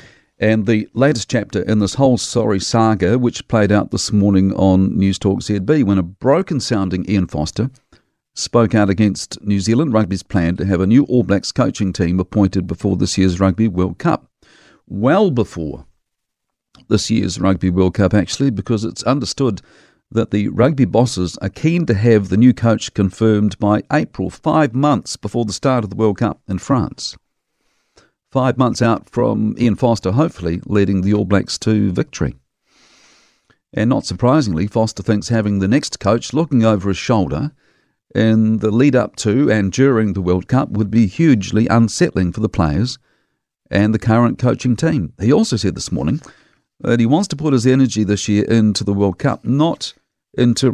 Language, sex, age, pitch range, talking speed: English, male, 50-69, 100-120 Hz, 175 wpm